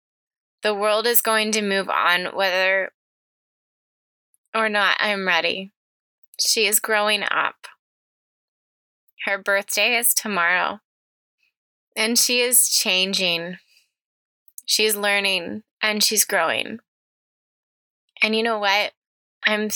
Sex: female